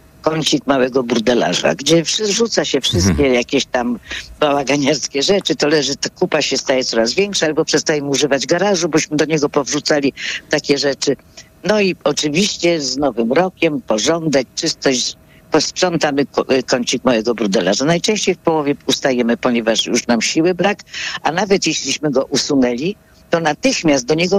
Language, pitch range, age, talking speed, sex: Polish, 135-175 Hz, 50-69, 150 wpm, female